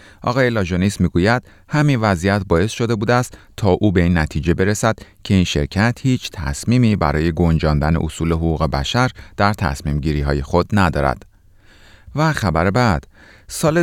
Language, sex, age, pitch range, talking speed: Persian, male, 30-49, 80-105 Hz, 150 wpm